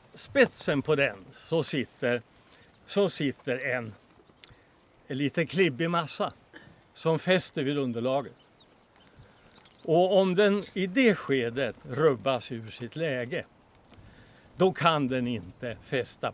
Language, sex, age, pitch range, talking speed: Swedish, male, 60-79, 115-155 Hz, 115 wpm